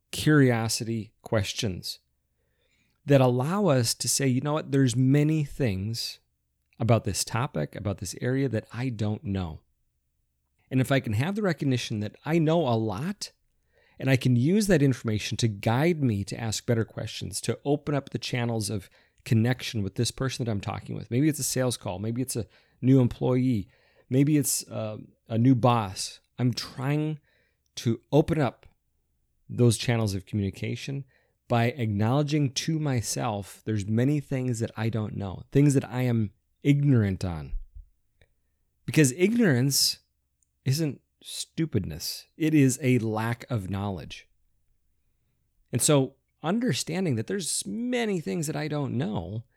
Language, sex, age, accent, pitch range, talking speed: English, male, 30-49, American, 105-140 Hz, 150 wpm